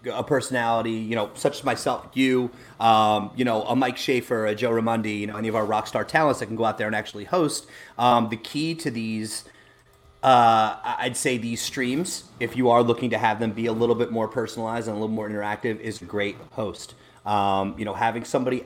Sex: male